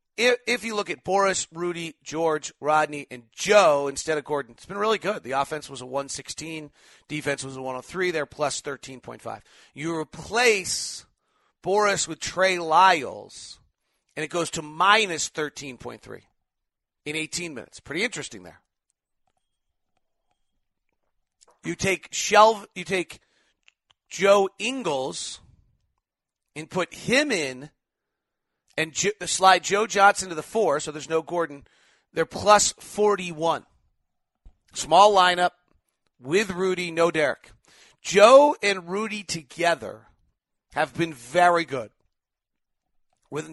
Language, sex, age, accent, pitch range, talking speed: English, male, 40-59, American, 150-190 Hz, 120 wpm